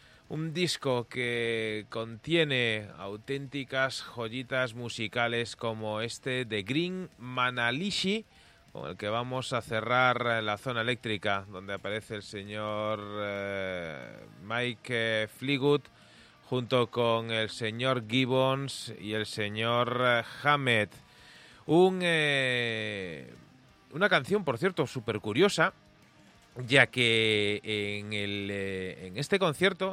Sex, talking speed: male, 105 wpm